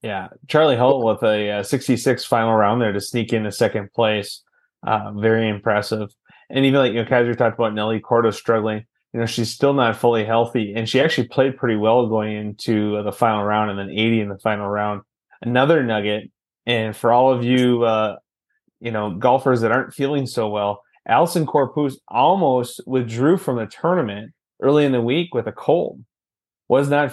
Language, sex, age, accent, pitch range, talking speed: English, male, 20-39, American, 110-130 Hz, 190 wpm